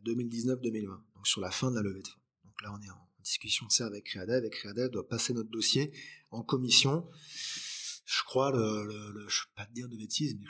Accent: French